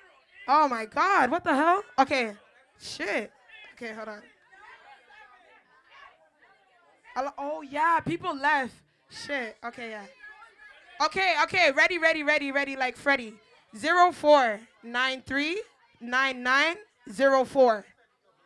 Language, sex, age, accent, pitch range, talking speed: English, female, 20-39, American, 270-390 Hz, 95 wpm